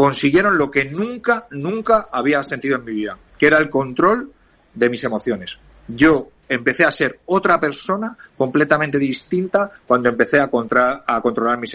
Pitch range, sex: 120-155 Hz, male